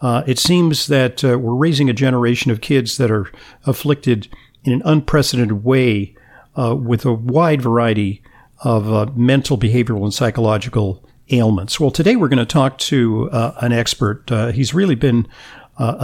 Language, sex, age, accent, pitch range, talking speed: English, male, 50-69, American, 115-140 Hz, 170 wpm